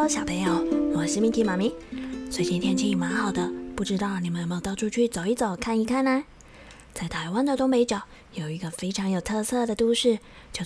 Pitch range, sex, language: 180-245 Hz, female, Chinese